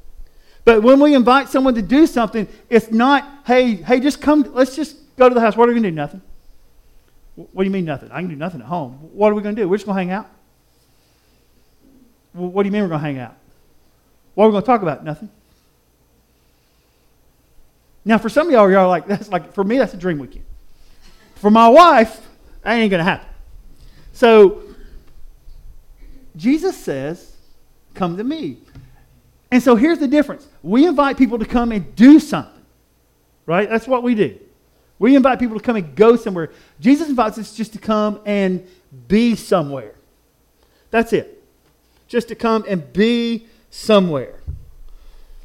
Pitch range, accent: 185-250 Hz, American